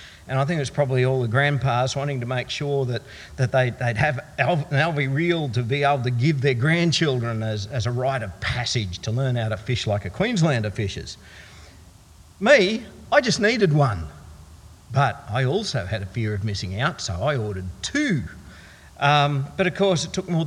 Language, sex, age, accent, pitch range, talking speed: English, male, 50-69, Australian, 110-170 Hz, 200 wpm